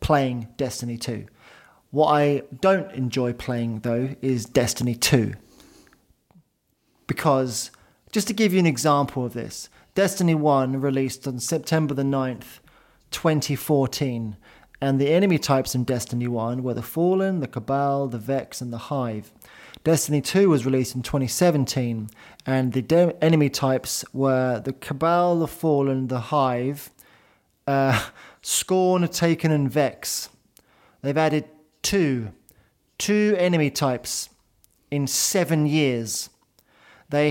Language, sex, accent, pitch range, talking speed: English, male, British, 130-165 Hz, 125 wpm